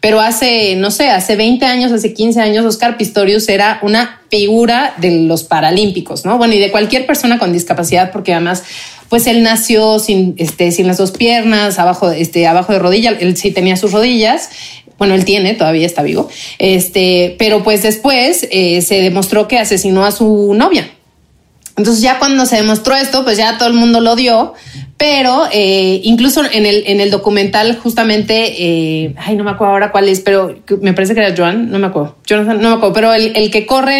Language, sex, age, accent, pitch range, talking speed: Spanish, female, 30-49, Mexican, 190-235 Hz, 200 wpm